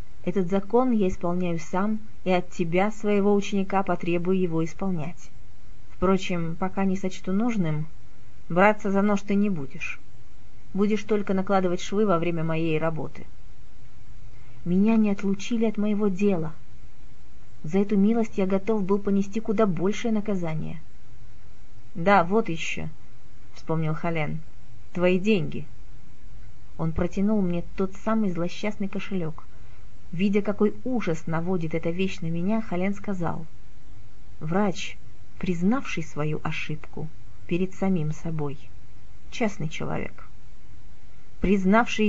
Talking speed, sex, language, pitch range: 115 wpm, female, Russian, 155-205 Hz